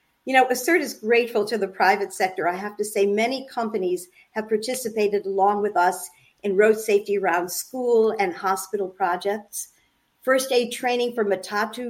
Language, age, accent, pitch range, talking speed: English, 50-69, American, 185-225 Hz, 165 wpm